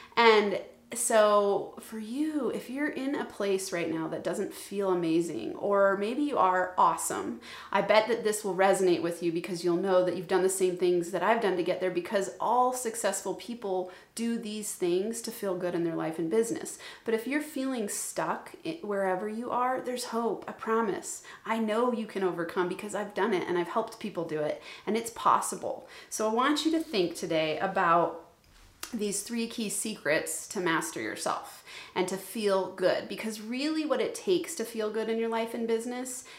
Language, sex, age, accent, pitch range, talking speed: English, female, 30-49, American, 185-240 Hz, 200 wpm